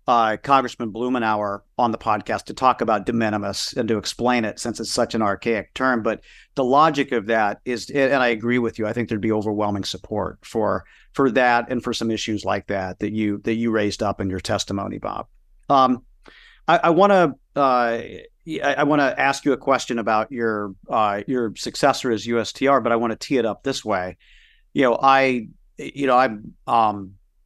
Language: English